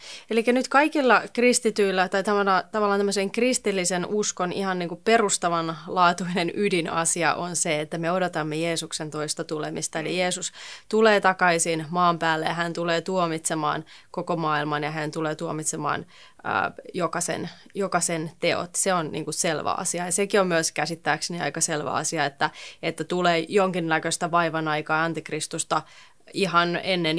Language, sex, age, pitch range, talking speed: Finnish, female, 20-39, 160-185 Hz, 135 wpm